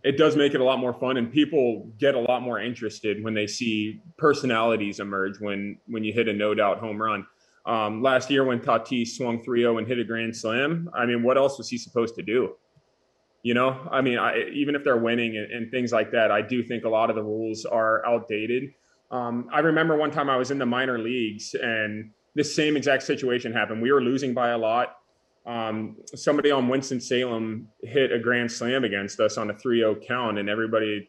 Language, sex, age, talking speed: English, male, 20-39, 220 wpm